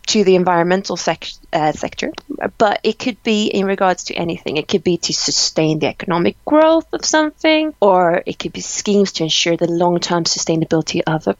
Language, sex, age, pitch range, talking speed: English, female, 20-39, 185-260 Hz, 190 wpm